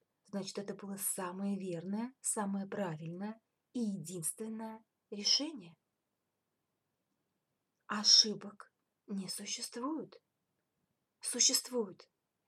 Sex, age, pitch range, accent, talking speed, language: female, 20-39, 210-270 Hz, native, 65 wpm, Russian